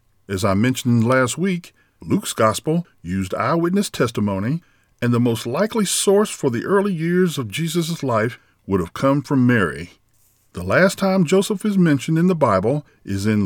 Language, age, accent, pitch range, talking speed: English, 50-69, American, 110-165 Hz, 170 wpm